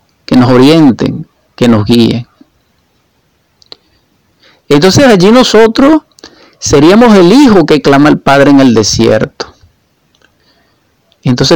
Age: 50-69